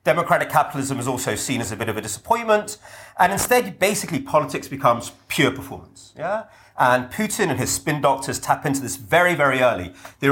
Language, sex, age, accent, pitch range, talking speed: English, male, 30-49, British, 115-155 Hz, 185 wpm